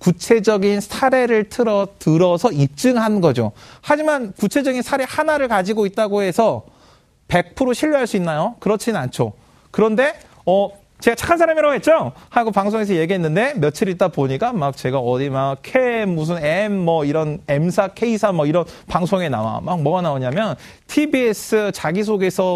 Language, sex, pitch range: Korean, male, 155-220 Hz